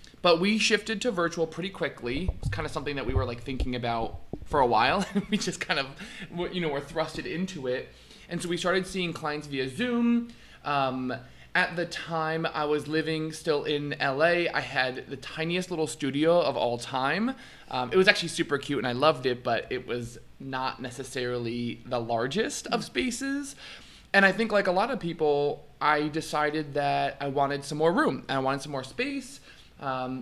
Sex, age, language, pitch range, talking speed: male, 20-39, English, 130-170 Hz, 195 wpm